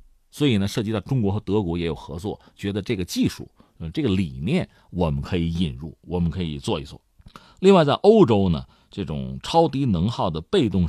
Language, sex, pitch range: Chinese, male, 85-140 Hz